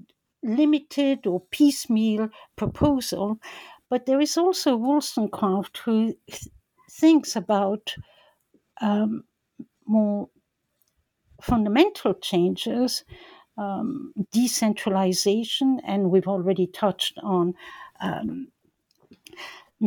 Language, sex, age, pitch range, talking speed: English, female, 60-79, 190-250 Hz, 70 wpm